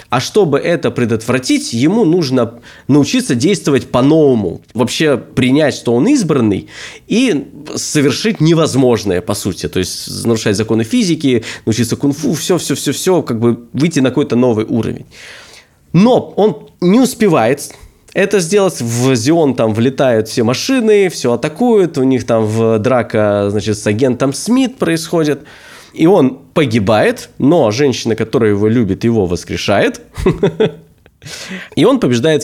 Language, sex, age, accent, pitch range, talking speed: Russian, male, 20-39, native, 115-170 Hz, 135 wpm